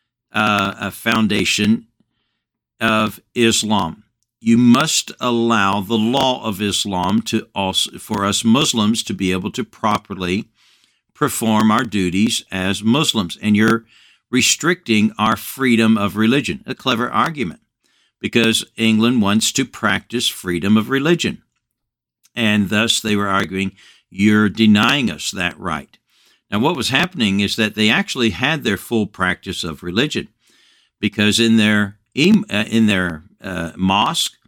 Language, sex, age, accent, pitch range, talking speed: English, male, 60-79, American, 100-115 Hz, 130 wpm